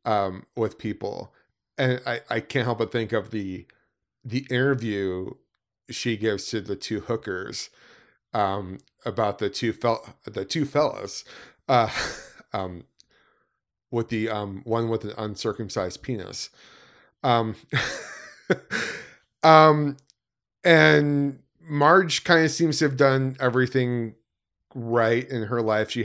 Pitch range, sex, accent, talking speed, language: 105-130 Hz, male, American, 125 wpm, English